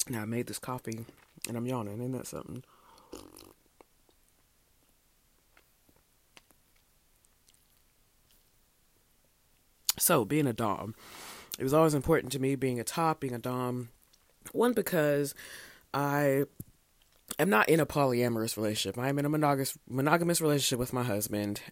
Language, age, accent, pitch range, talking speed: English, 30-49, American, 110-145 Hz, 125 wpm